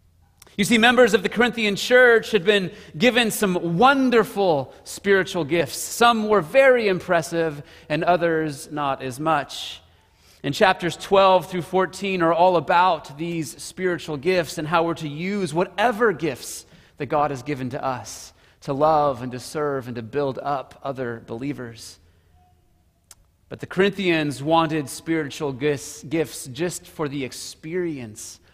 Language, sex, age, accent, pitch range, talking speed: English, male, 30-49, American, 135-190 Hz, 145 wpm